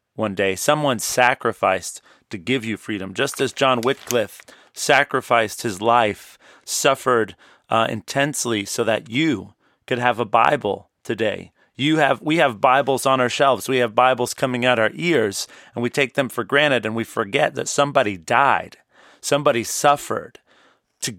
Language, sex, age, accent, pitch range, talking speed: English, male, 40-59, American, 115-140 Hz, 160 wpm